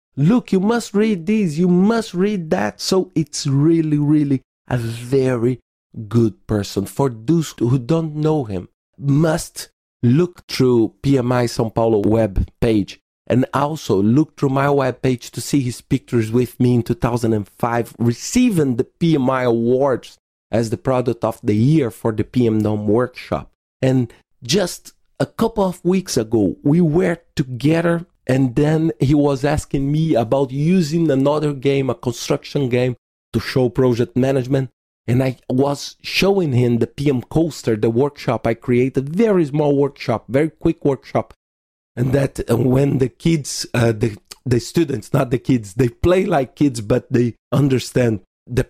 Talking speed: 155 wpm